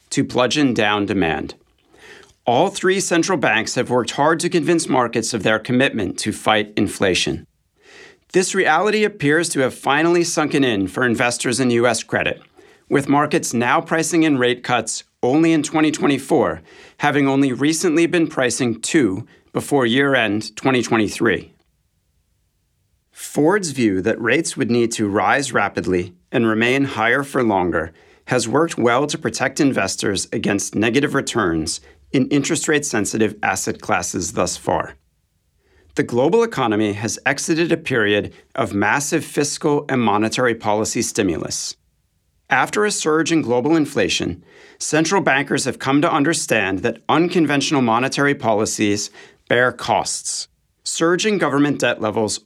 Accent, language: American, English